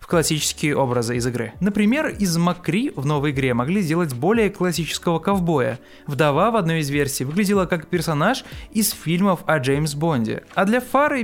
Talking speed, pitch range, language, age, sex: 165 wpm, 145-200 Hz, Russian, 20-39, male